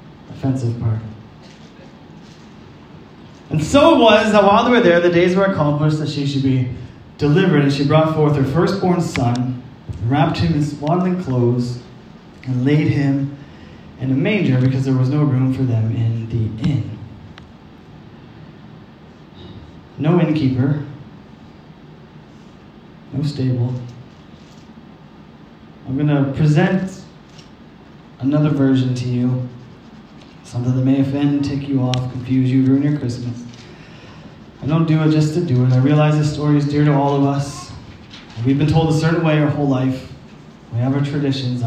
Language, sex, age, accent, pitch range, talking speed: English, male, 30-49, American, 120-150 Hz, 145 wpm